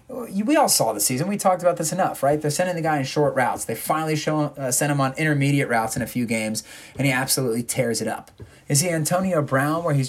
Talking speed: 250 wpm